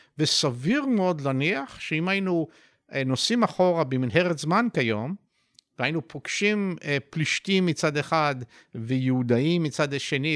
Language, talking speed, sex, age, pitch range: Hebrew, 105 wpm, male, 50-69, 140-210 Hz